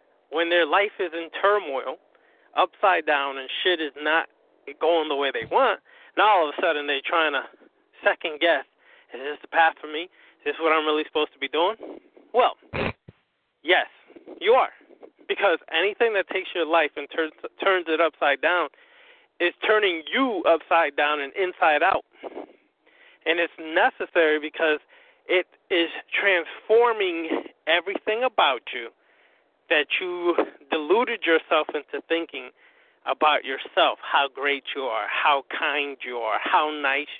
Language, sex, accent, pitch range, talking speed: English, male, American, 155-230 Hz, 150 wpm